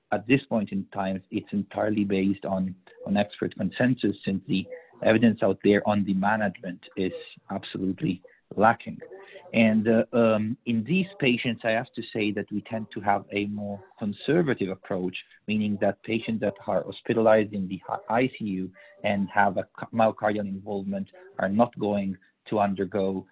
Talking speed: 155 wpm